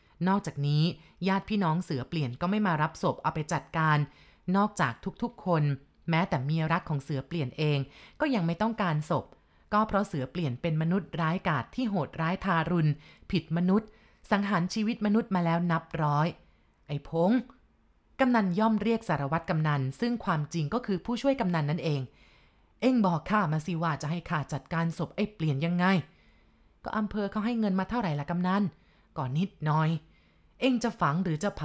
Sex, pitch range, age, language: female, 160-205 Hz, 20-39, Thai